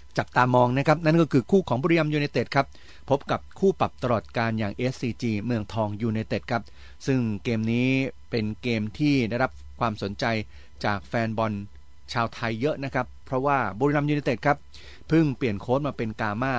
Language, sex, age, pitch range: Thai, male, 30-49, 100-125 Hz